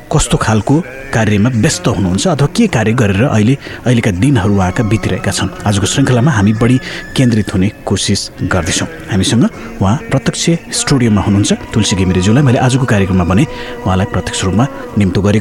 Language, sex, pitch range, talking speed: English, male, 100-135 Hz, 130 wpm